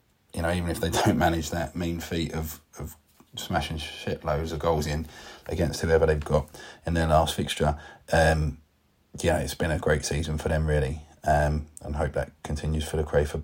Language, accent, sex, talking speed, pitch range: English, British, male, 190 wpm, 75-85 Hz